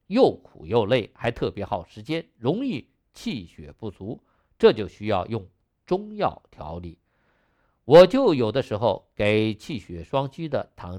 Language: Chinese